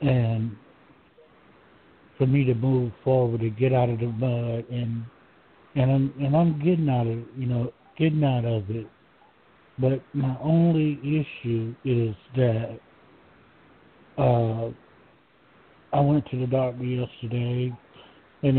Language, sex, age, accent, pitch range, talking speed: English, male, 60-79, American, 115-135 Hz, 130 wpm